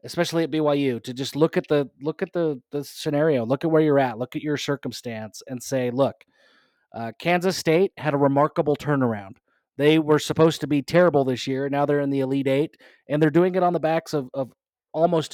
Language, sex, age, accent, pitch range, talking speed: English, male, 30-49, American, 135-170 Hz, 225 wpm